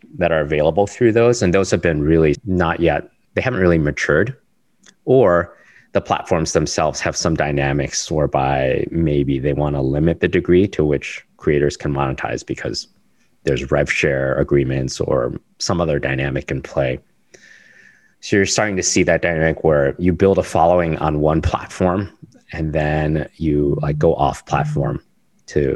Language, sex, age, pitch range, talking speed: English, male, 30-49, 70-85 Hz, 165 wpm